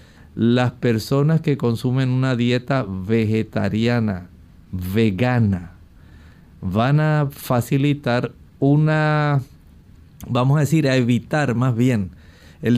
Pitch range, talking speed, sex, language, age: 110-135 Hz, 95 wpm, male, Spanish, 50-69